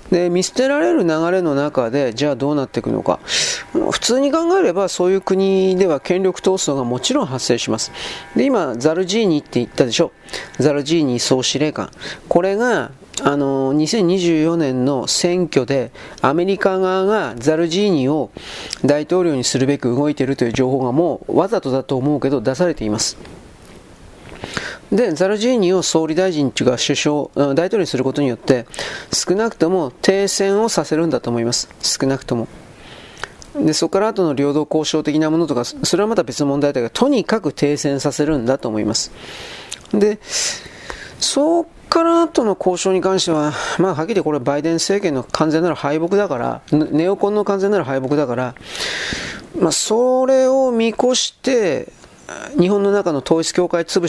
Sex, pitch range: male, 135-185 Hz